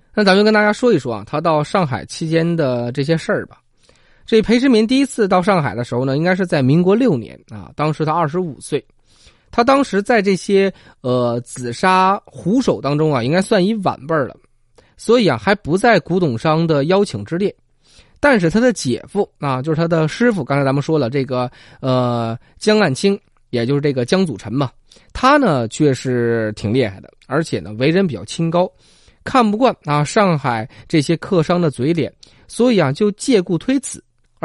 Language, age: Chinese, 20-39